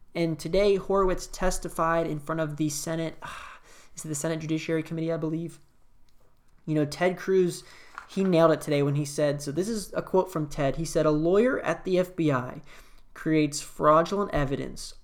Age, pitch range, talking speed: 20-39, 145-200 Hz, 185 wpm